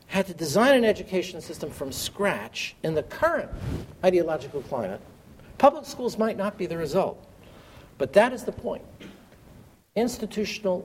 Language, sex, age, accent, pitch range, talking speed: English, male, 60-79, American, 155-210 Hz, 145 wpm